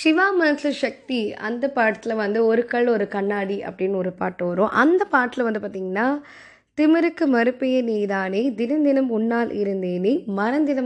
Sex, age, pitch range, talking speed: female, 20-39, 205-255 Hz, 140 wpm